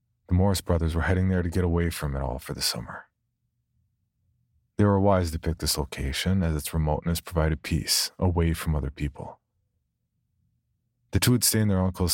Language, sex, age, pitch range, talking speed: English, male, 40-59, 75-95 Hz, 190 wpm